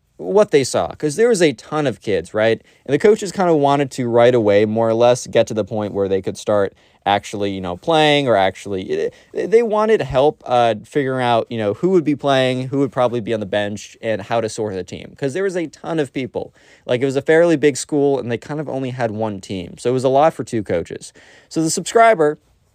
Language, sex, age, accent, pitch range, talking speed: English, male, 20-39, American, 105-145 Hz, 250 wpm